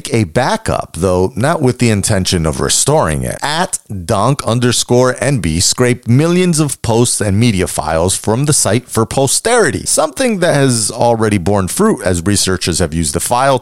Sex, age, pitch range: male, 40-59, 90-130 Hz